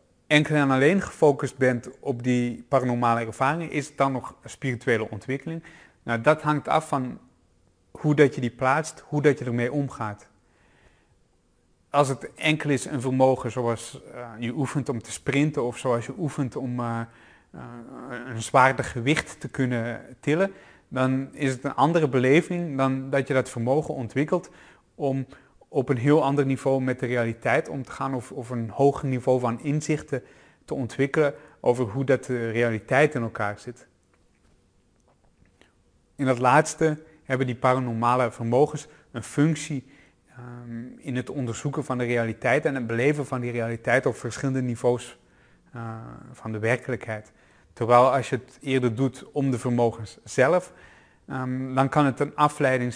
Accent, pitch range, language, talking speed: Dutch, 120-140 Hz, Dutch, 155 wpm